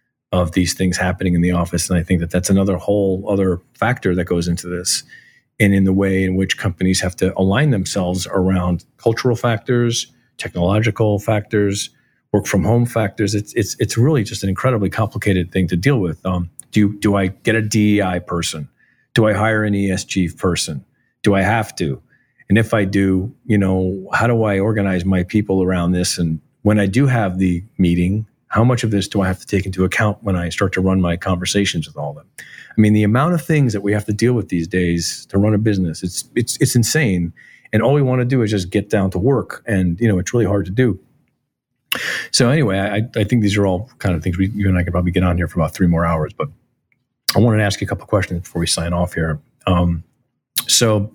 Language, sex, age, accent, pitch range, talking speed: English, male, 40-59, American, 90-110 Hz, 230 wpm